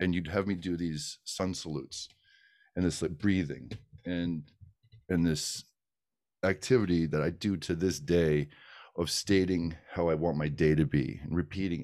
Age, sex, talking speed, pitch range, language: 40-59, male, 165 wpm, 75-90 Hz, English